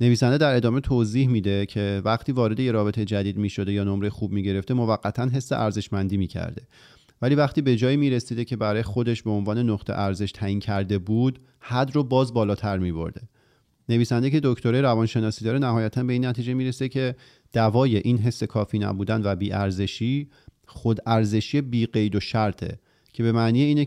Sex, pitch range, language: male, 105-130 Hz, Persian